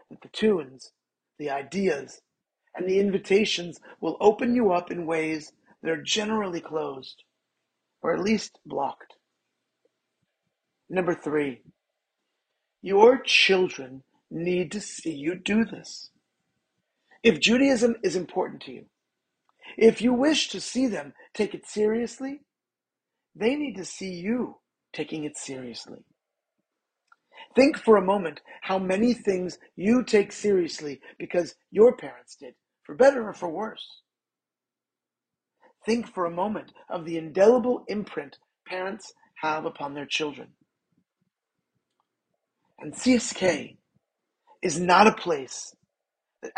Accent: American